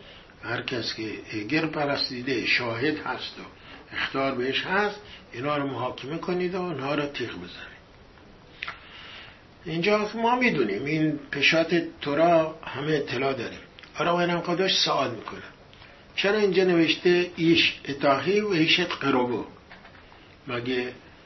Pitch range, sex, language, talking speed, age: 135-170 Hz, male, English, 125 wpm, 60-79